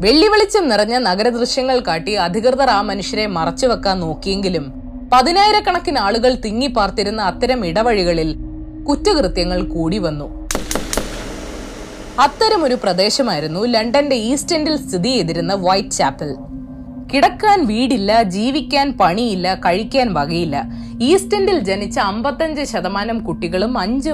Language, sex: Malayalam, female